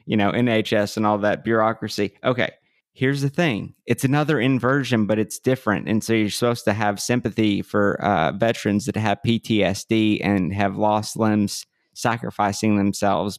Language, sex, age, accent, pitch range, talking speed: English, male, 20-39, American, 100-120 Hz, 160 wpm